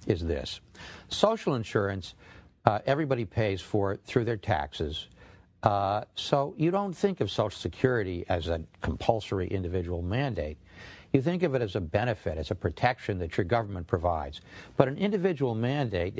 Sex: male